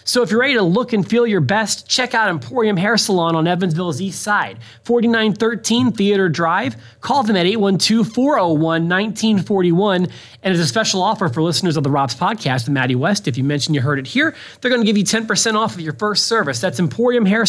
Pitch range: 155-205 Hz